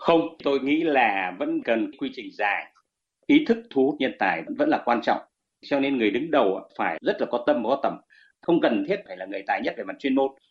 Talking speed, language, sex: 250 wpm, Vietnamese, male